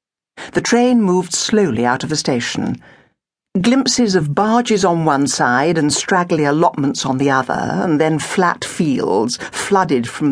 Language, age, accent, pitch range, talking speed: English, 60-79, British, 140-210 Hz, 150 wpm